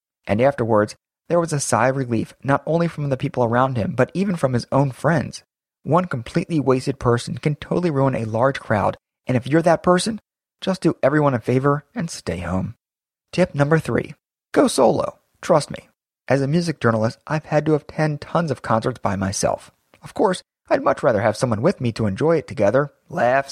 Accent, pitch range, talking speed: American, 115-155 Hz, 200 wpm